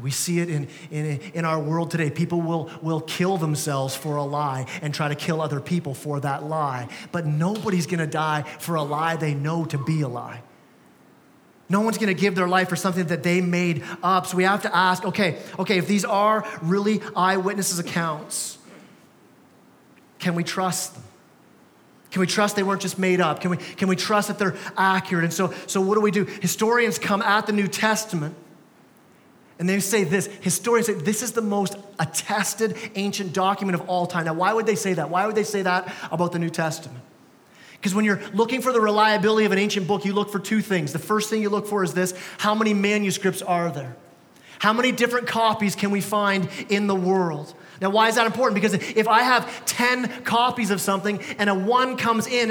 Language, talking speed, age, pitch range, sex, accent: English, 210 wpm, 30-49, 170-215 Hz, male, American